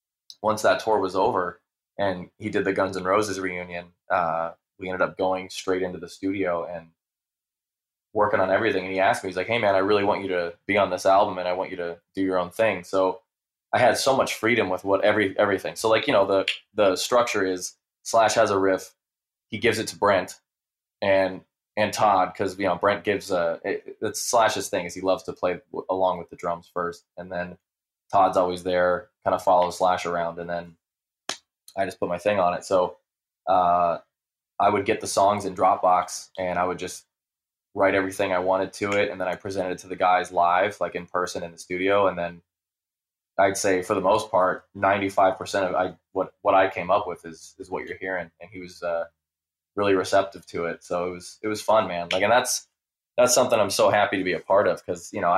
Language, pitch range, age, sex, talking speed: English, 85-95 Hz, 20-39, male, 225 wpm